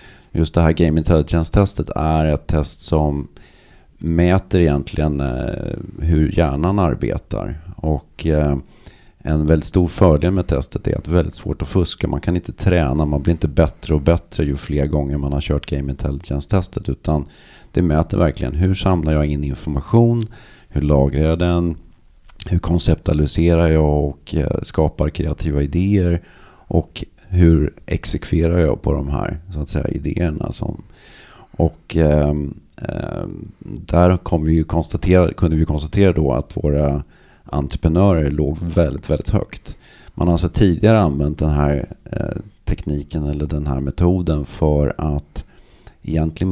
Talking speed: 145 wpm